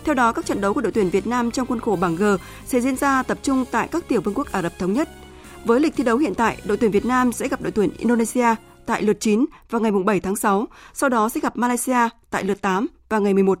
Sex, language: female, Vietnamese